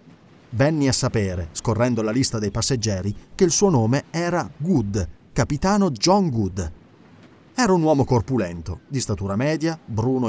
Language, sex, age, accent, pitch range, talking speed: Italian, male, 30-49, native, 105-160 Hz, 145 wpm